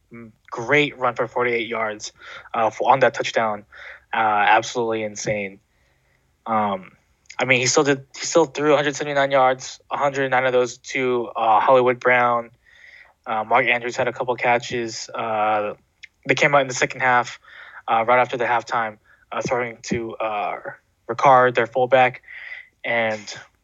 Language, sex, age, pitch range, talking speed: English, male, 20-39, 115-140 Hz, 145 wpm